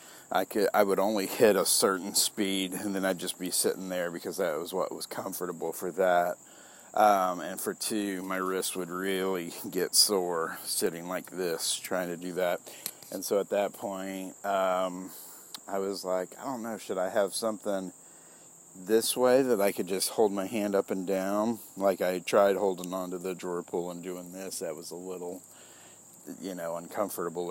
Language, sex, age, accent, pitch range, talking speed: English, male, 40-59, American, 90-100 Hz, 190 wpm